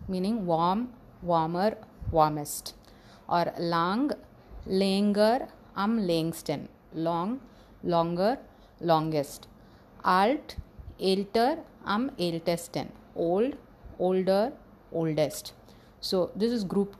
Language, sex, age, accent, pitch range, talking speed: English, female, 30-49, Indian, 175-215 Hz, 80 wpm